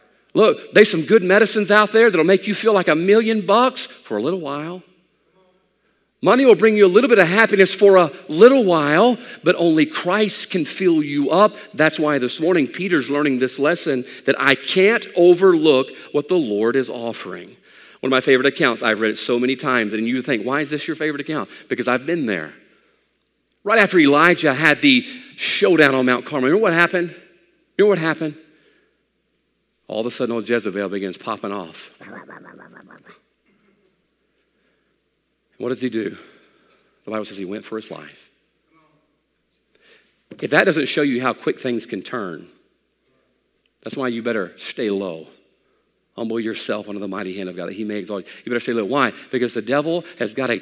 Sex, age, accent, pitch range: male, 40-59, American, 115-185 Hz